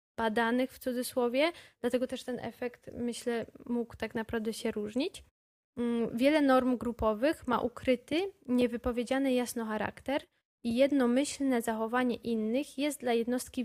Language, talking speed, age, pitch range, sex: Polish, 125 wpm, 10-29, 230-255 Hz, female